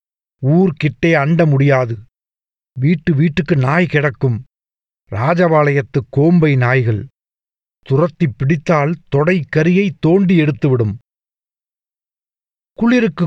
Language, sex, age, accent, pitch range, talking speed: Tamil, male, 50-69, native, 135-180 Hz, 70 wpm